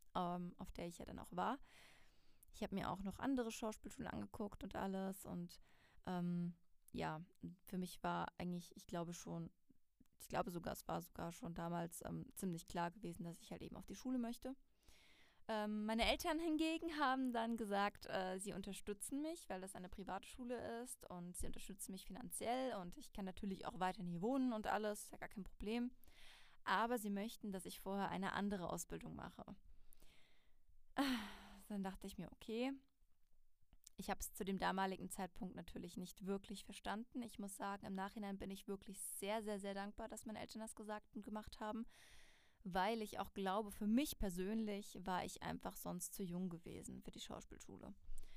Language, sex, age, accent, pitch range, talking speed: German, female, 20-39, German, 180-220 Hz, 180 wpm